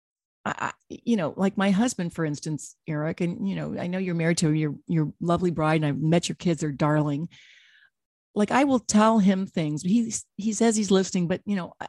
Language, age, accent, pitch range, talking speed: English, 50-69, American, 160-205 Hz, 210 wpm